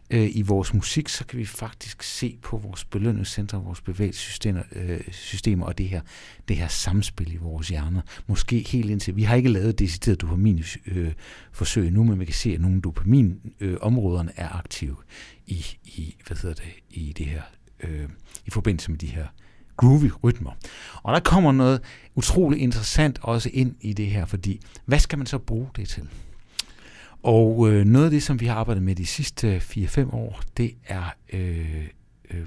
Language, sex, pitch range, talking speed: Danish, male, 90-120 Hz, 170 wpm